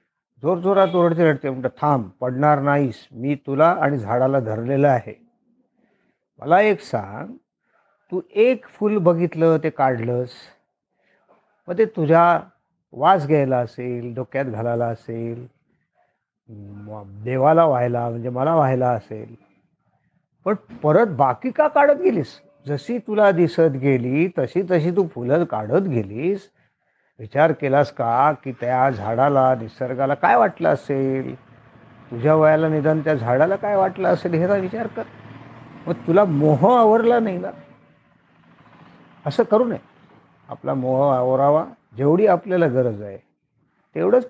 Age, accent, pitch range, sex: 50-69, native, 125-190 Hz, male